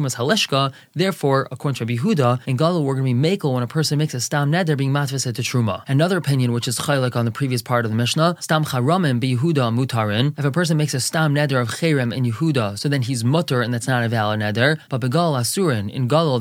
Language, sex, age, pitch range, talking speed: English, male, 20-39, 125-165 Hz, 235 wpm